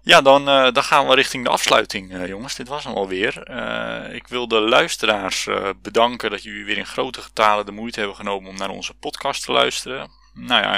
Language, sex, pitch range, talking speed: Dutch, male, 100-120 Hz, 210 wpm